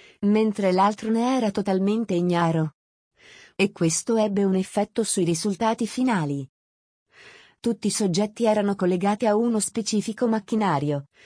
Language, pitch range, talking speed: Italian, 175-215 Hz, 125 wpm